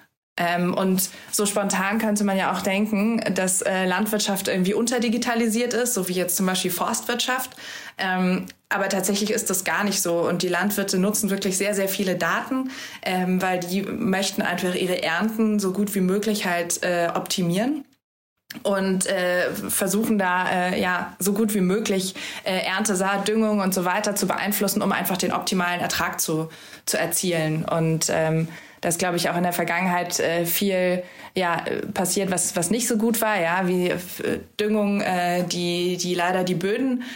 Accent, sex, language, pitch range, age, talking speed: German, female, German, 180-205 Hz, 20-39, 170 wpm